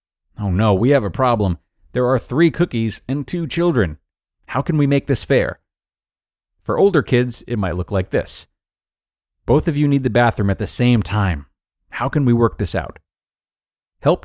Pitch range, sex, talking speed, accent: 95-135 Hz, male, 185 wpm, American